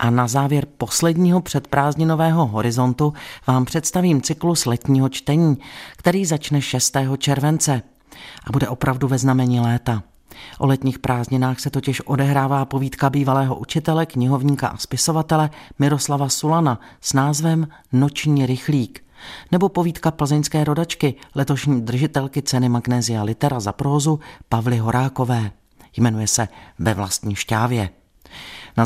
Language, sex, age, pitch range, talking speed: Czech, male, 40-59, 120-145 Hz, 120 wpm